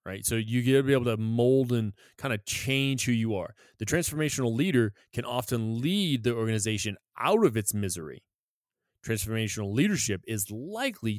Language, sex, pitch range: English, male, 105-130 Hz